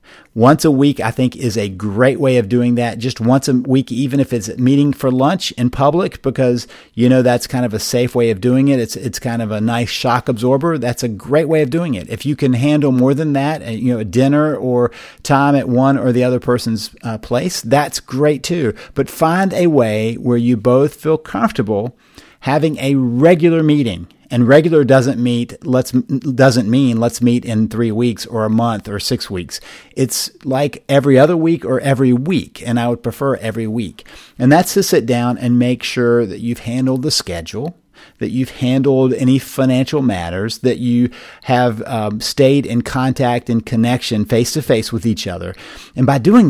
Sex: male